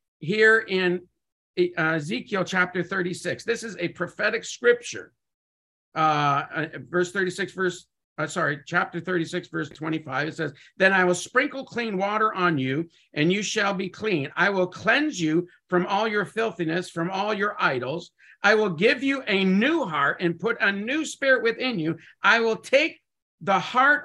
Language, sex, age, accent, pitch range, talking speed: English, male, 50-69, American, 155-205 Hz, 165 wpm